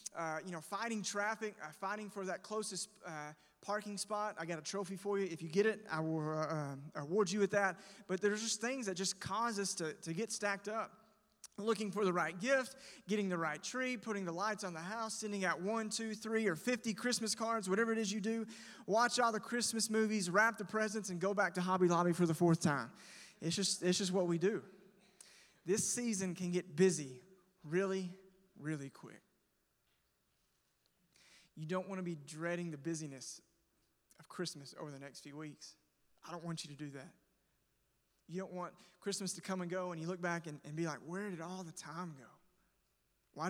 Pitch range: 160-205 Hz